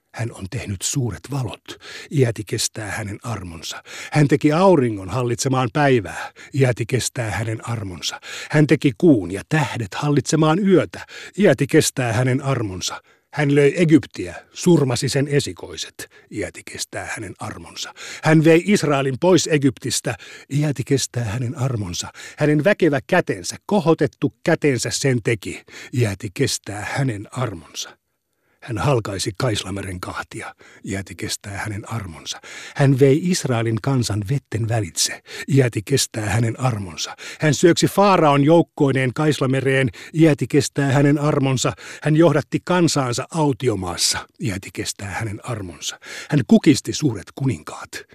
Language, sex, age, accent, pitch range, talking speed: Finnish, male, 60-79, native, 110-150 Hz, 120 wpm